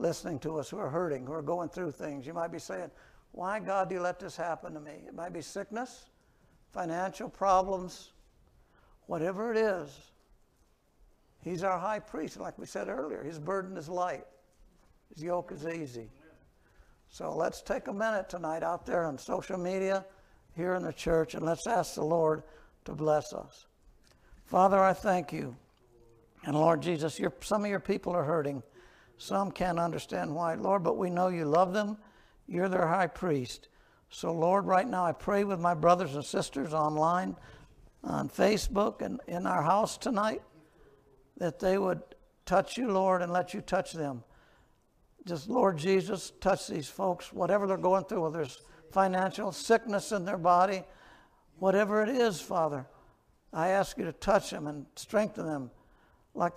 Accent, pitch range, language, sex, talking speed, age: American, 160-195 Hz, English, male, 170 wpm, 60-79